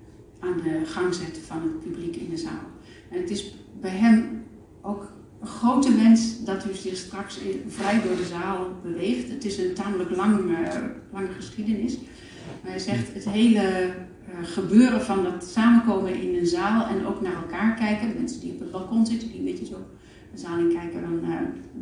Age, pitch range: 40-59, 170-225 Hz